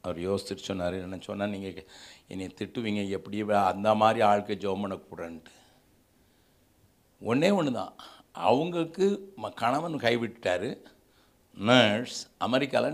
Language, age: Tamil, 60-79